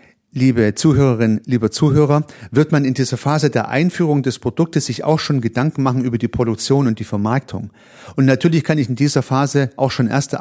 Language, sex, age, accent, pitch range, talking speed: German, male, 40-59, German, 120-155 Hz, 195 wpm